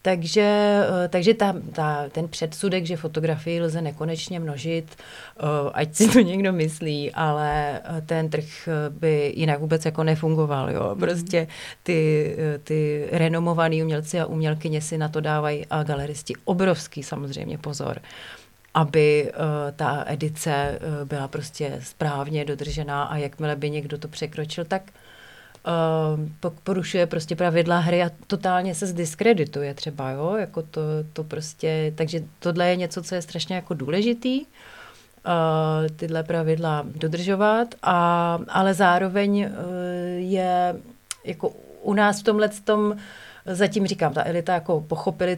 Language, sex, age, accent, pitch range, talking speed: Czech, female, 30-49, native, 155-180 Hz, 130 wpm